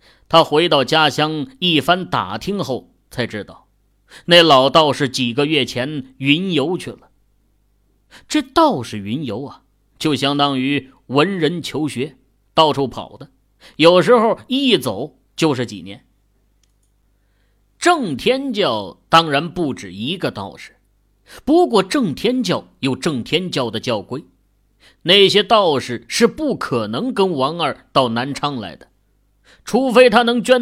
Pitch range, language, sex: 120-195 Hz, Chinese, male